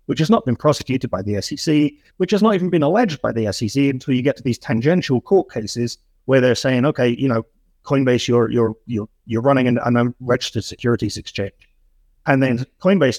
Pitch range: 115-155 Hz